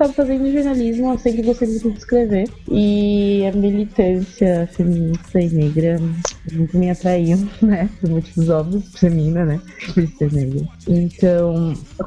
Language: Portuguese